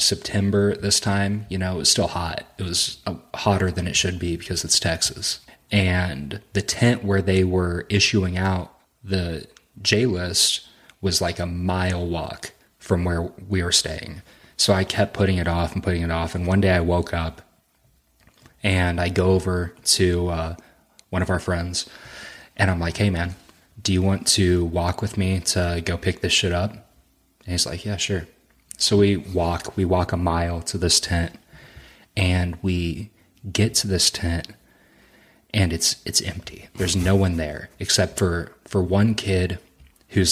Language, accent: English, American